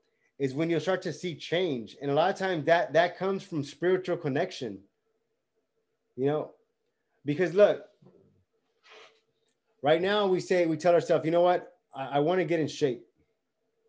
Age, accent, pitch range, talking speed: 20-39, American, 150-185 Hz, 170 wpm